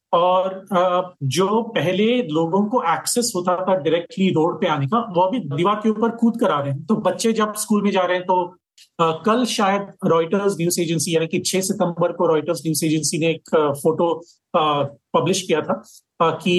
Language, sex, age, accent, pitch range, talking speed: Hindi, male, 40-59, native, 165-205 Hz, 190 wpm